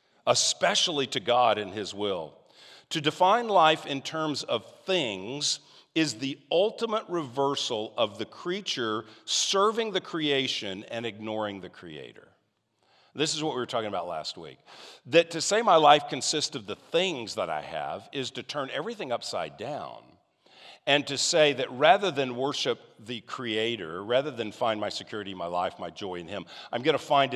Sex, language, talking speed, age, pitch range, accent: male, English, 170 wpm, 50-69, 110-155 Hz, American